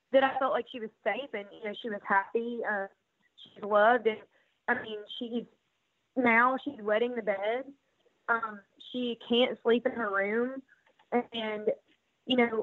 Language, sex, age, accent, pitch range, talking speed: English, female, 20-39, American, 215-240 Hz, 170 wpm